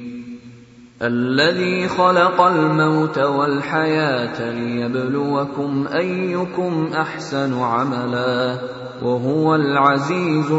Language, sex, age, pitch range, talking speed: Bengali, male, 20-39, 125-160 Hz, 55 wpm